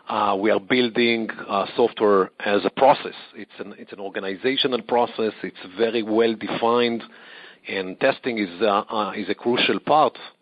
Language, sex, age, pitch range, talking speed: English, male, 40-59, 100-120 Hz, 160 wpm